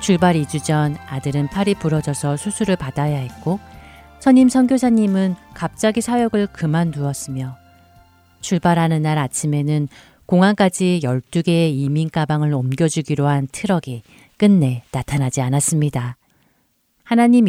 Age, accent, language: 40-59, native, Korean